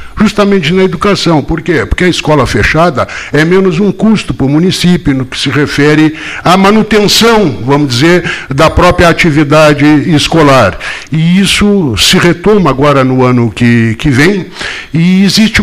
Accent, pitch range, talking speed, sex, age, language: Brazilian, 115-170 Hz, 155 wpm, male, 60-79, Portuguese